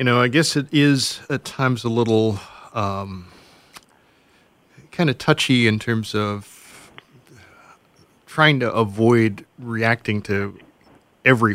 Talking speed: 120 wpm